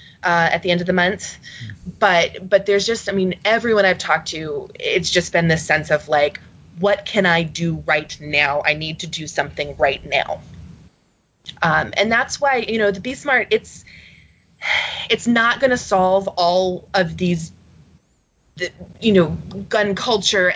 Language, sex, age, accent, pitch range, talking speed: English, female, 20-39, American, 165-195 Hz, 170 wpm